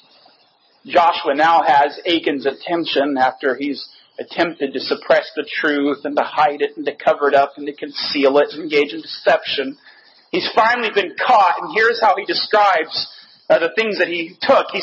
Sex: male